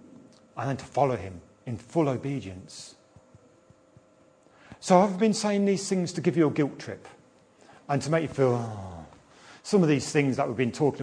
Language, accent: English, British